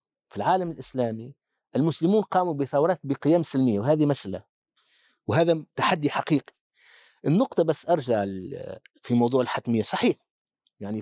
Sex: male